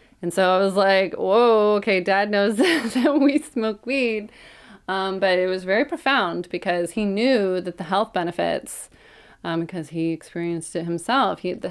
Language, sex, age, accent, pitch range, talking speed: English, female, 30-49, American, 170-220 Hz, 175 wpm